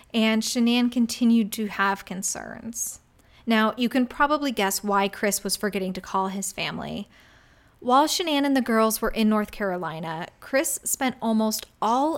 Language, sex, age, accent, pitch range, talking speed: English, female, 20-39, American, 210-270 Hz, 160 wpm